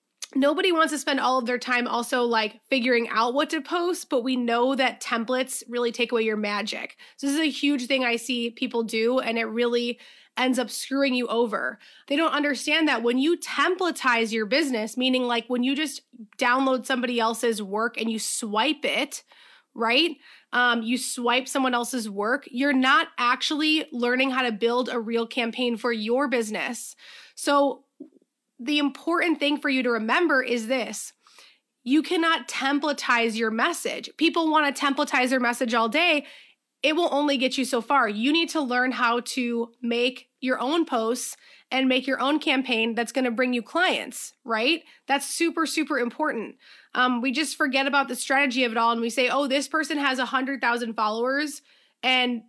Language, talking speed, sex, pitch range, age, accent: English, 185 wpm, female, 240-285 Hz, 20-39, American